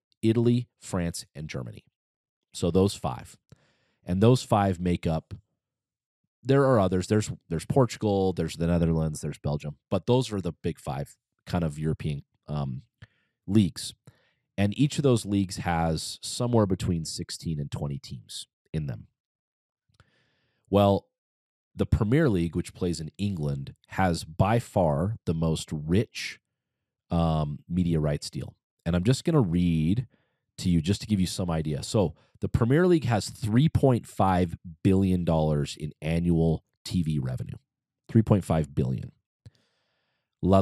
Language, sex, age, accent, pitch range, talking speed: English, male, 30-49, American, 80-115 Hz, 140 wpm